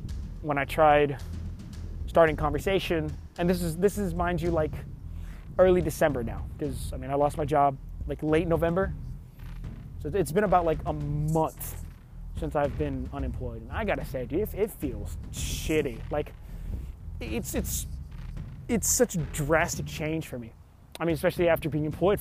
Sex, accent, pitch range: male, American, 105-165 Hz